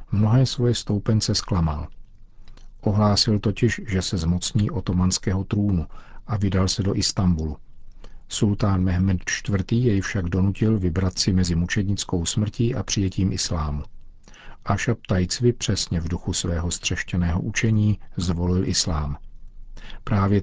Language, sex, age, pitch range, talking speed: Czech, male, 50-69, 90-105 Hz, 120 wpm